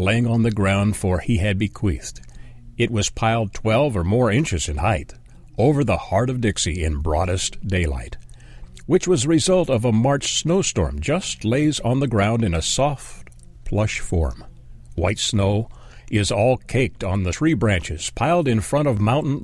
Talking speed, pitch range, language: 175 wpm, 90-125 Hz, English